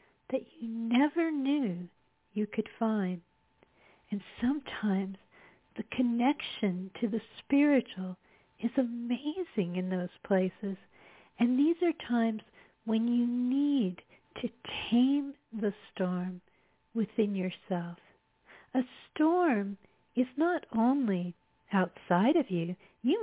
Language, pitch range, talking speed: English, 190-255 Hz, 105 wpm